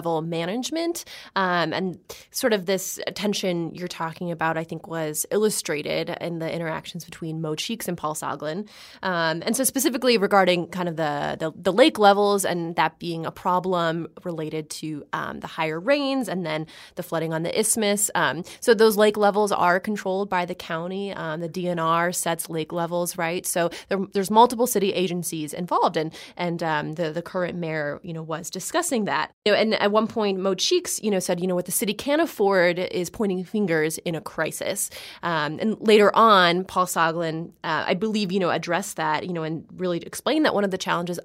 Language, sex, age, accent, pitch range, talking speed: English, female, 20-39, American, 165-200 Hz, 200 wpm